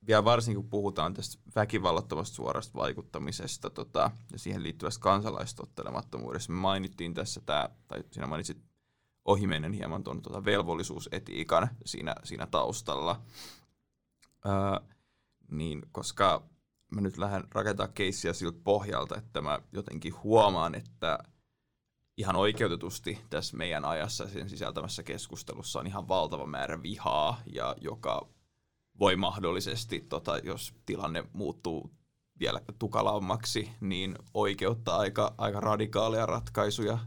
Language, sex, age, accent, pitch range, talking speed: Finnish, male, 20-39, native, 100-115 Hz, 115 wpm